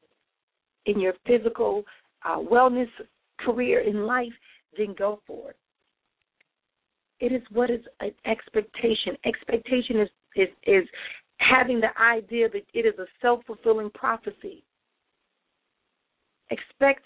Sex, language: female, English